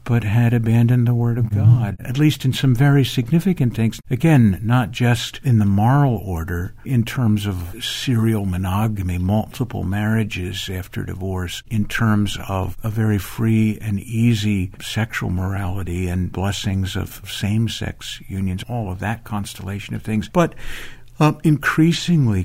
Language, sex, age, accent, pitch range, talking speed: English, male, 60-79, American, 100-125 Hz, 145 wpm